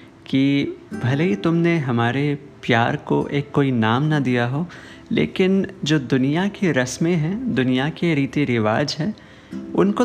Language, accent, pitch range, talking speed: Hindi, native, 120-170 Hz, 150 wpm